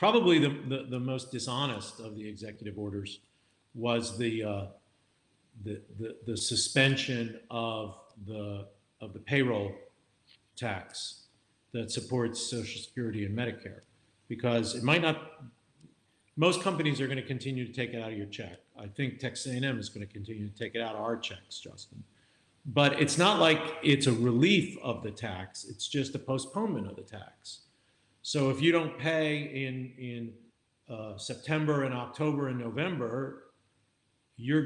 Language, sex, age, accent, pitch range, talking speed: English, male, 50-69, American, 115-150 Hz, 160 wpm